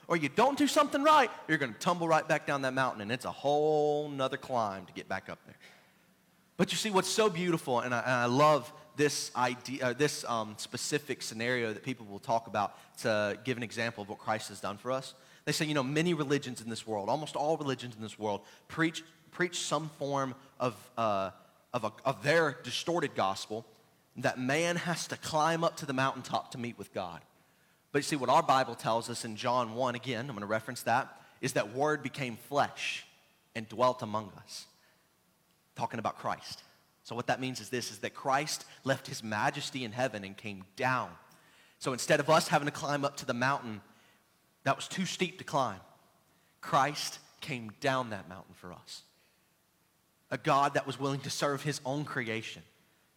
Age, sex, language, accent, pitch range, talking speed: 30-49, male, English, American, 115-150 Hz, 200 wpm